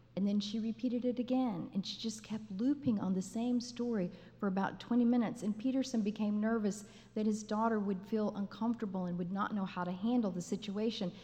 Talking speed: 205 wpm